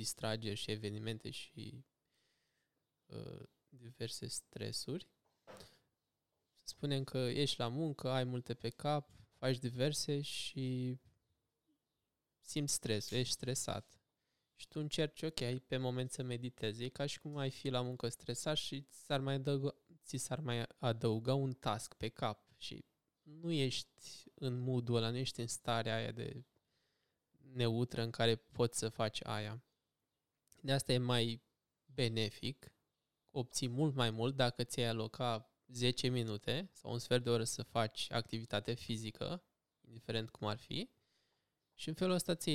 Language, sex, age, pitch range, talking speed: Romanian, male, 20-39, 115-140 Hz, 145 wpm